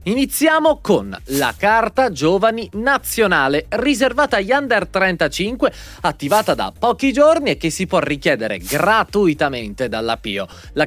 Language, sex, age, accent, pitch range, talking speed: Italian, male, 30-49, native, 150-240 Hz, 125 wpm